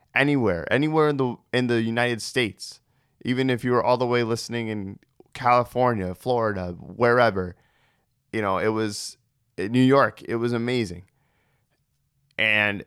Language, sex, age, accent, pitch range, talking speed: English, male, 20-39, American, 105-130 Hz, 145 wpm